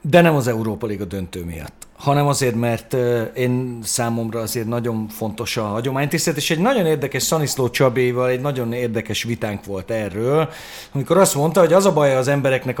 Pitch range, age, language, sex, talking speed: 115-155 Hz, 40-59, Hungarian, male, 180 wpm